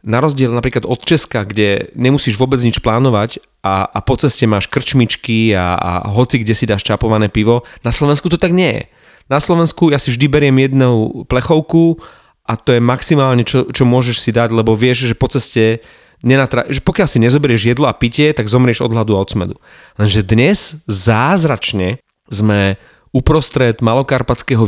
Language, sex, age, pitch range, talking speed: Slovak, male, 30-49, 105-130 Hz, 175 wpm